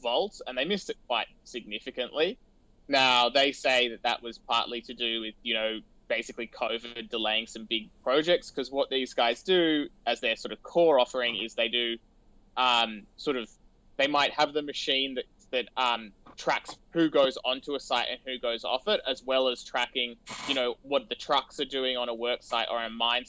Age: 20-39